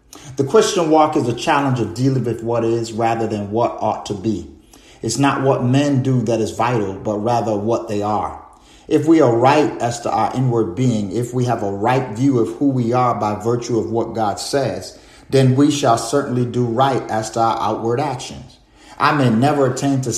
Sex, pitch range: male, 110-130 Hz